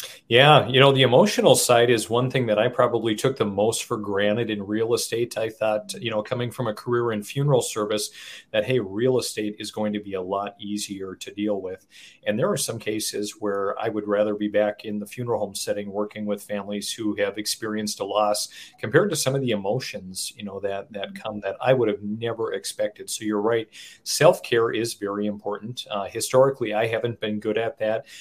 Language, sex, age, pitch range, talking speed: English, male, 40-59, 105-115 Hz, 215 wpm